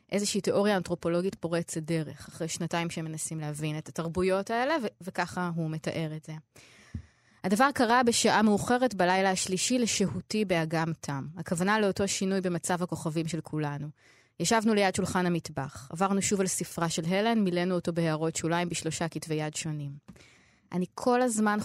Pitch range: 155-195 Hz